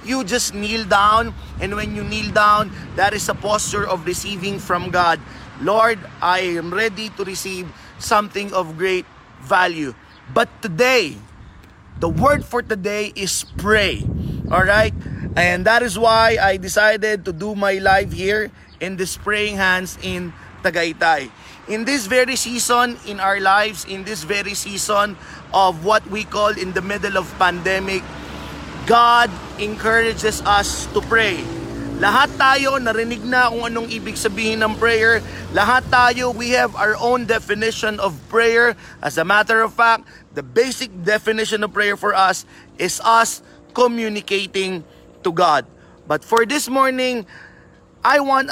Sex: male